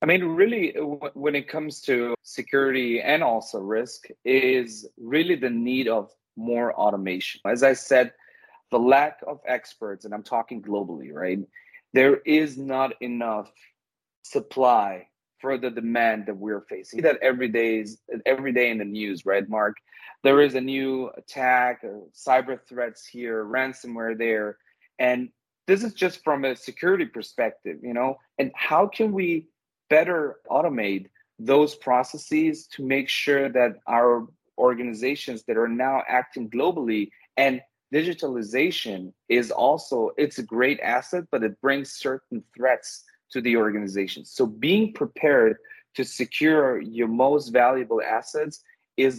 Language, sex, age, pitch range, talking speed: English, male, 30-49, 115-145 Hz, 145 wpm